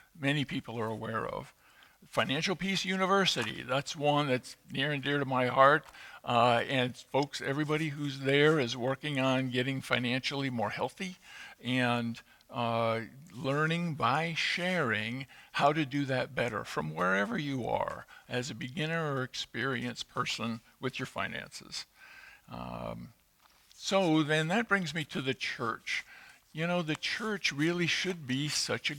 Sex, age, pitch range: male, 50-69, 120-155 Hz